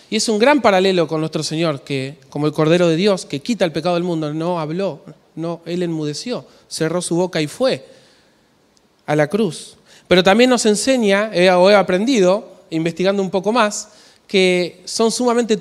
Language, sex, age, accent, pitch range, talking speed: Spanish, male, 20-39, Argentinian, 155-210 Hz, 175 wpm